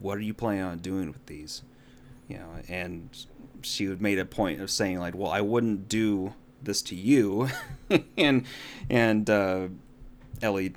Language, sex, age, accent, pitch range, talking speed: English, male, 30-49, American, 95-115 Hz, 160 wpm